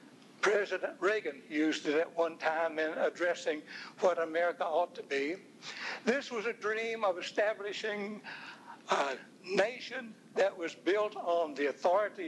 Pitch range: 170-230 Hz